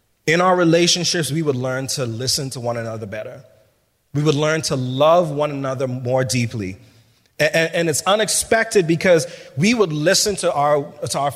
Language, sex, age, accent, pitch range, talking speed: English, male, 30-49, American, 120-165 Hz, 170 wpm